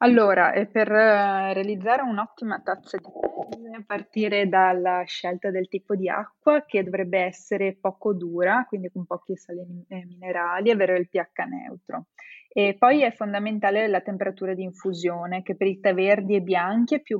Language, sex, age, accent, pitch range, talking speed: Italian, female, 20-39, native, 185-210 Hz, 170 wpm